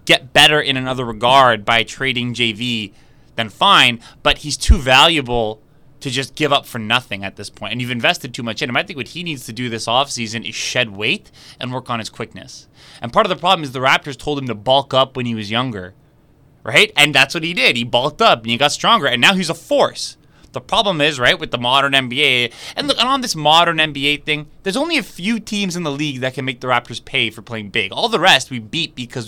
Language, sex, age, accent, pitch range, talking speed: English, male, 20-39, American, 125-170 Hz, 245 wpm